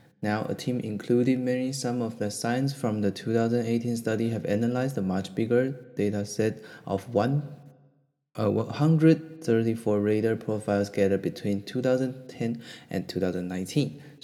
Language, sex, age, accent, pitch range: Chinese, male, 20-39, native, 105-135 Hz